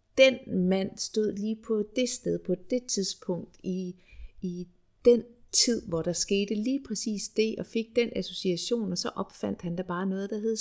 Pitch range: 165-220 Hz